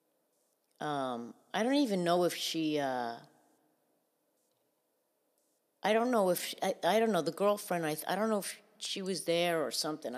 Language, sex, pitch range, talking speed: English, female, 150-200 Hz, 170 wpm